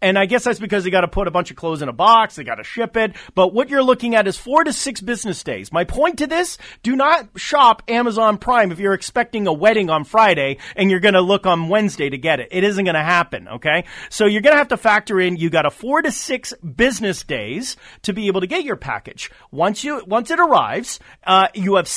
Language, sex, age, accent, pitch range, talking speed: English, male, 30-49, American, 175-250 Hz, 260 wpm